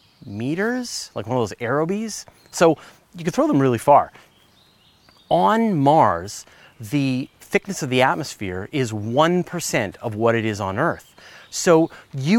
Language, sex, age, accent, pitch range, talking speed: English, male, 30-49, American, 120-185 Hz, 145 wpm